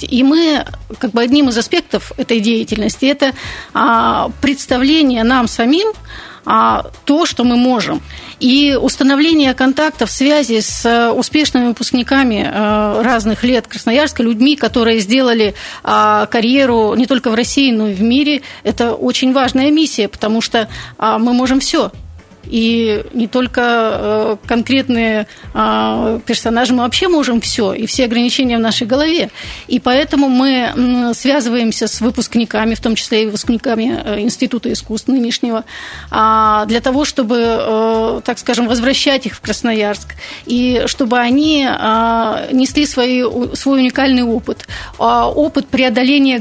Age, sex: 30-49, female